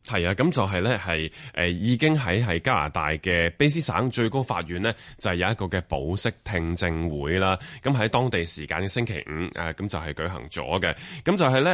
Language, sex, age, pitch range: Chinese, male, 20-39, 85-120 Hz